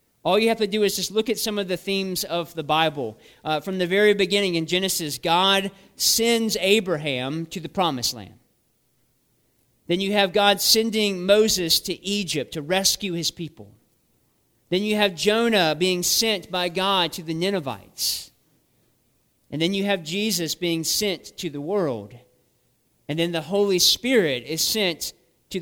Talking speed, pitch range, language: 165 wpm, 150-200 Hz, English